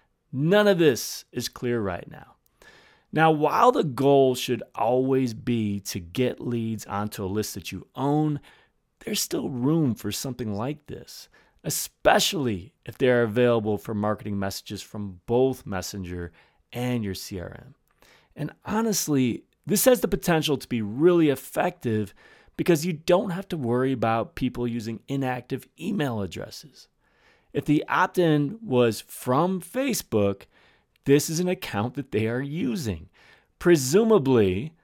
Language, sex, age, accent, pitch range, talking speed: English, male, 30-49, American, 105-150 Hz, 140 wpm